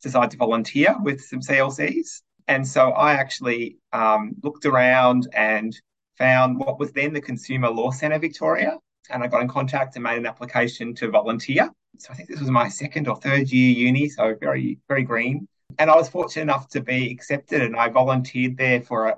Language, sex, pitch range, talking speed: English, male, 120-140 Hz, 195 wpm